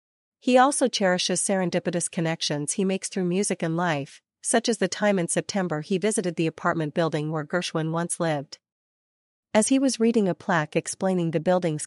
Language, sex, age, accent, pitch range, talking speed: English, female, 40-59, American, 165-200 Hz, 175 wpm